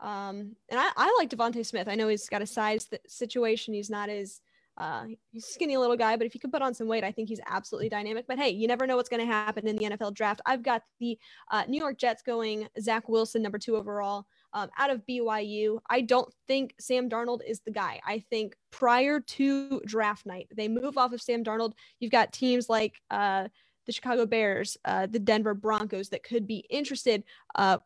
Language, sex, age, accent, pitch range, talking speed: English, female, 10-29, American, 215-250 Hz, 220 wpm